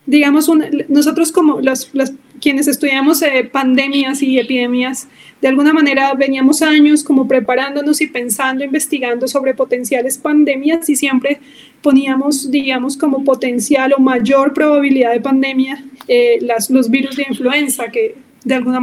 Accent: Colombian